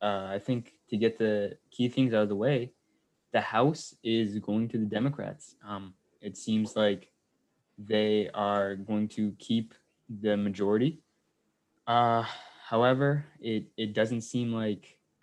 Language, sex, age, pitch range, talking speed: English, male, 20-39, 100-110 Hz, 145 wpm